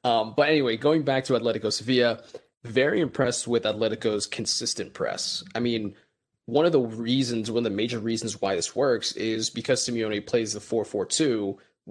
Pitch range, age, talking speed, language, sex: 110-130 Hz, 20-39, 170 wpm, English, male